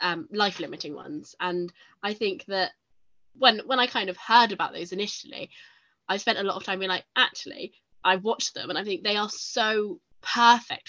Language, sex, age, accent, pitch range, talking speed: English, female, 20-39, British, 175-200 Hz, 195 wpm